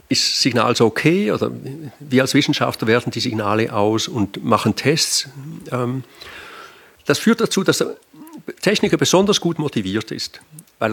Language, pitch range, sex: German, 120-165 Hz, male